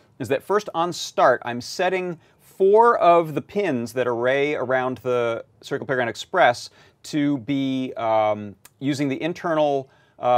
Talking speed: 145 wpm